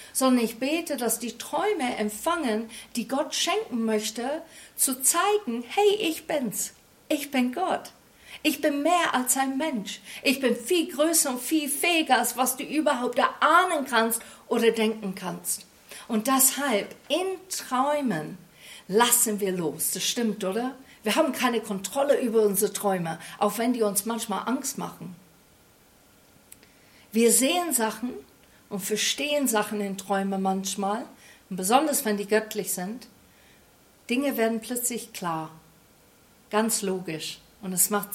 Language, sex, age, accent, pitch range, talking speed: German, female, 50-69, German, 205-265 Hz, 140 wpm